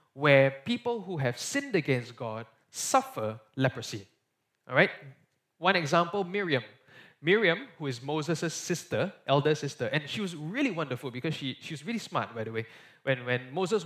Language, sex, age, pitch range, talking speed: English, male, 20-39, 130-170 Hz, 165 wpm